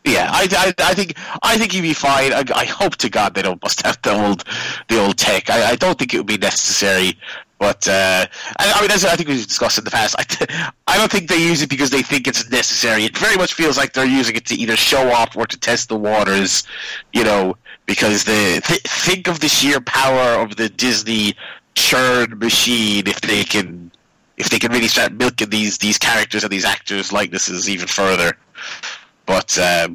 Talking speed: 220 wpm